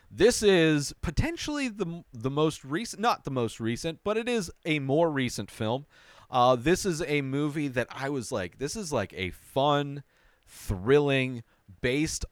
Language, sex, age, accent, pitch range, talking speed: English, male, 30-49, American, 115-160 Hz, 165 wpm